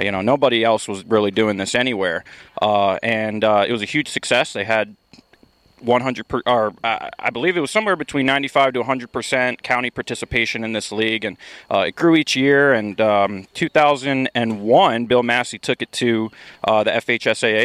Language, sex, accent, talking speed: English, male, American, 185 wpm